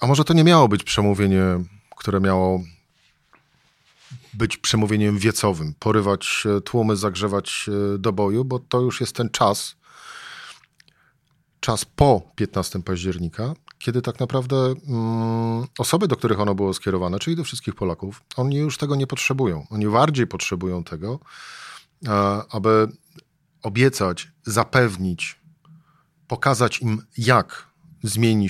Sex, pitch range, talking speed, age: male, 100-130 Hz, 120 wpm, 40-59